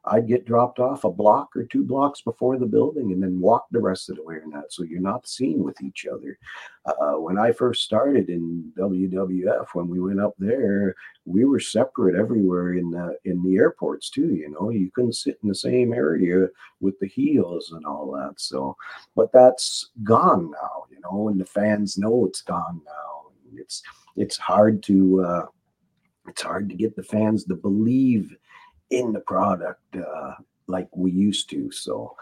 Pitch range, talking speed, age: 90-110 Hz, 190 wpm, 50-69